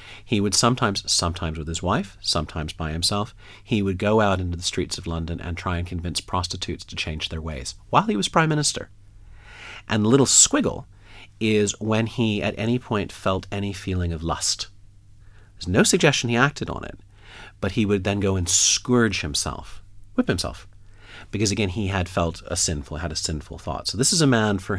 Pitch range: 85-105 Hz